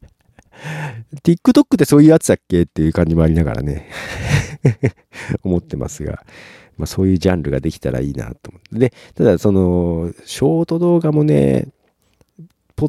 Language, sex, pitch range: Japanese, male, 80-125 Hz